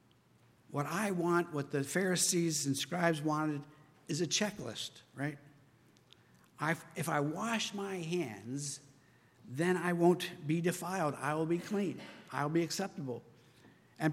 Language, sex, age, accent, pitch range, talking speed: English, male, 60-79, American, 145-180 Hz, 135 wpm